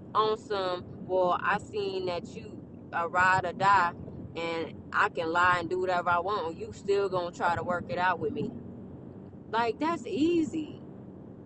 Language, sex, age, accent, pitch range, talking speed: English, female, 20-39, American, 165-220 Hz, 175 wpm